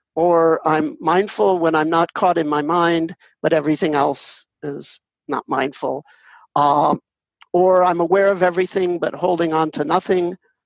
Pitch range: 160-195 Hz